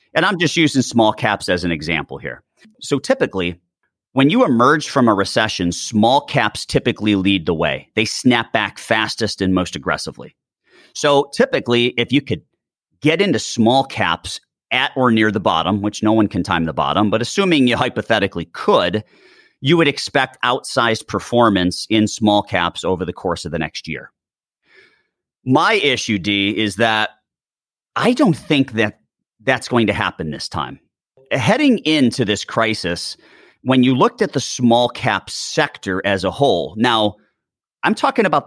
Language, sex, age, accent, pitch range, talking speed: English, male, 40-59, American, 100-130 Hz, 165 wpm